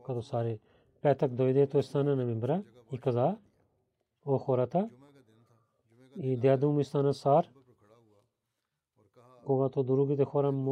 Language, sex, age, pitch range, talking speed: Bulgarian, male, 40-59, 125-150 Hz, 80 wpm